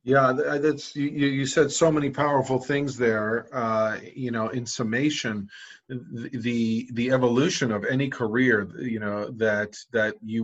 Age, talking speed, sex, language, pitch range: 40-59, 150 wpm, male, English, 110-125 Hz